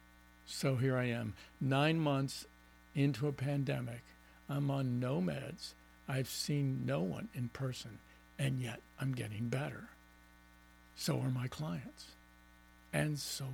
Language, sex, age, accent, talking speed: English, male, 60-79, American, 135 wpm